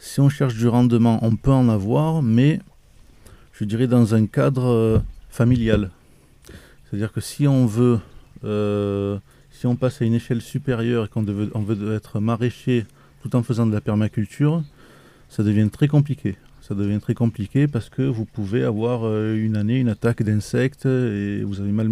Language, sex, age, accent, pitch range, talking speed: French, male, 20-39, French, 105-125 Hz, 180 wpm